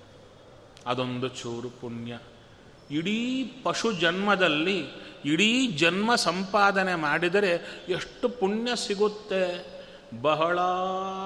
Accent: native